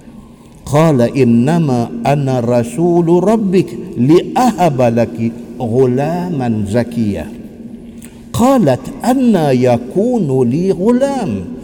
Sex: male